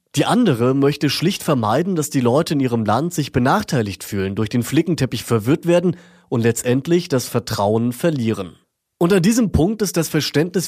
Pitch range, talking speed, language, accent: 120-165 Hz, 170 wpm, German, German